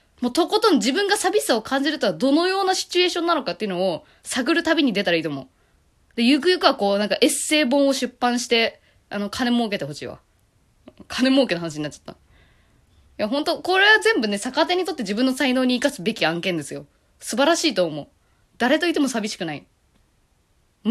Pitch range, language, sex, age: 175-290 Hz, Japanese, female, 20-39